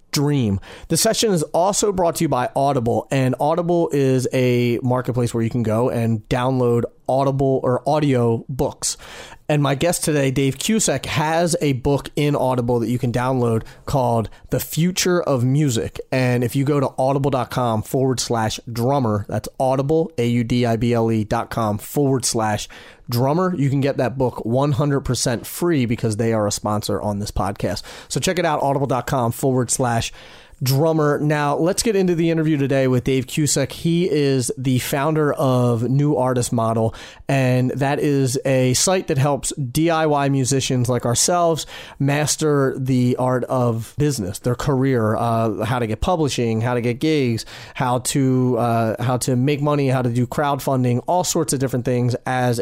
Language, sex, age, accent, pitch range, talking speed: English, male, 30-49, American, 120-145 Hz, 165 wpm